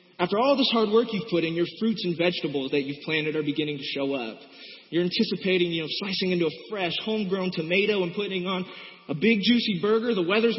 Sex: male